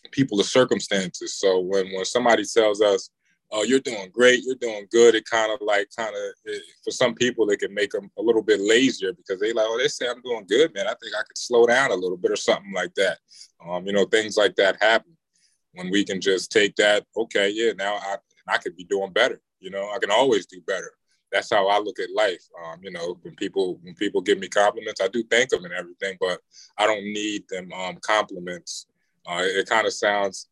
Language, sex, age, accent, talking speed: English, male, 20-39, American, 235 wpm